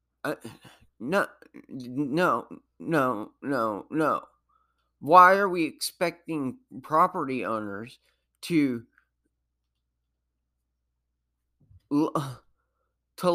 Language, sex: English, male